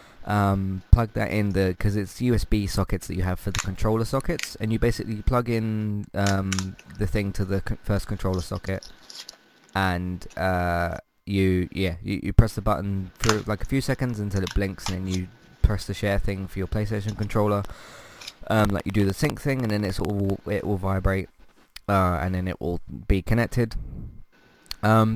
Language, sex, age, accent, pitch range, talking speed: English, male, 20-39, British, 95-110 Hz, 190 wpm